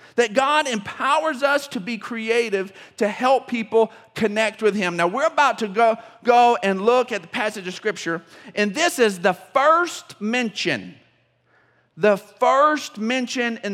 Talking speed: 155 wpm